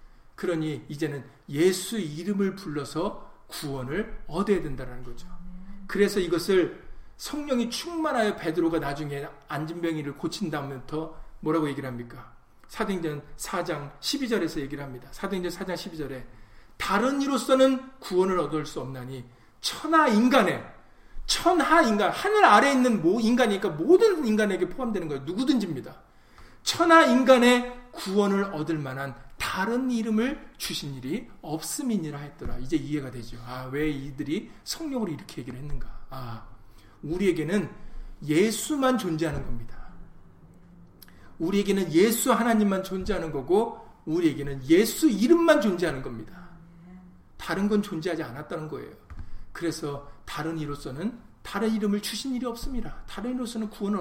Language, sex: Korean, male